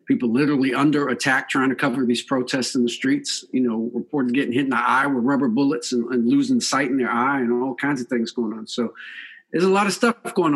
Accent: American